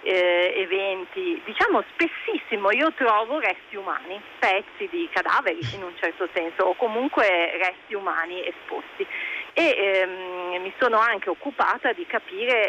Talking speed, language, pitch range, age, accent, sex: 130 wpm, Italian, 175-215 Hz, 40-59, native, female